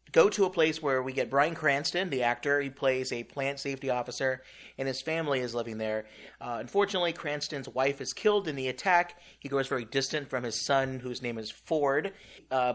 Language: English